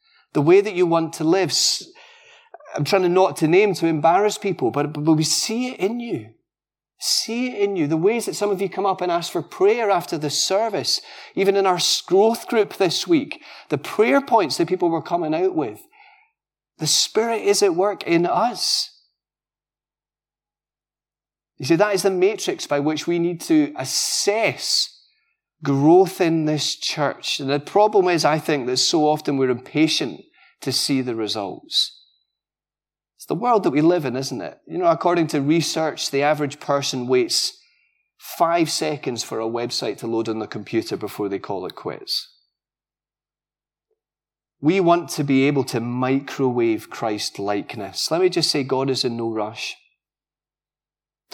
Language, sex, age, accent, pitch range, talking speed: English, male, 30-49, British, 140-220 Hz, 170 wpm